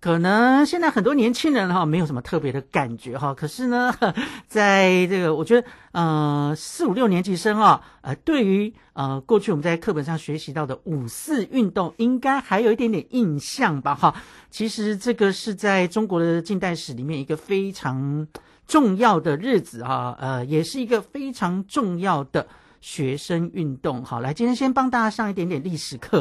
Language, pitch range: Chinese, 145-205 Hz